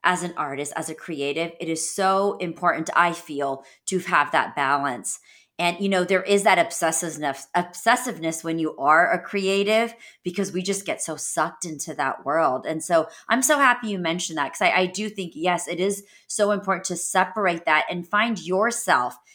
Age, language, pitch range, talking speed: 30-49, English, 160-200 Hz, 190 wpm